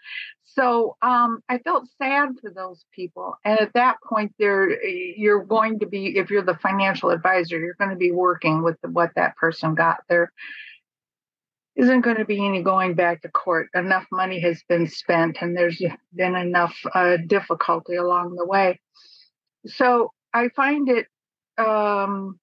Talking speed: 165 wpm